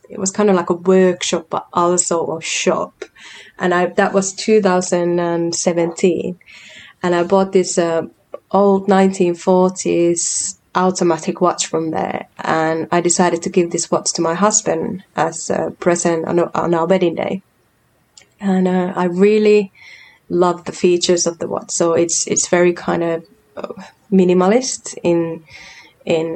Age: 20-39